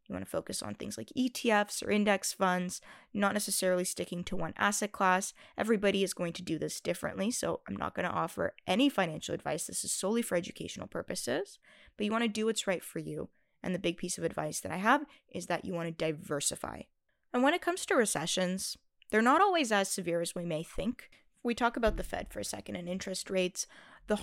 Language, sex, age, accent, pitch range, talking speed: English, female, 20-39, American, 185-230 Hz, 225 wpm